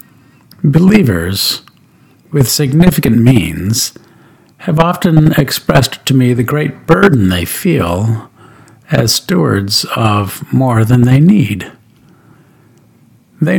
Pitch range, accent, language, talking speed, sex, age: 110-150 Hz, American, English, 95 wpm, male, 50-69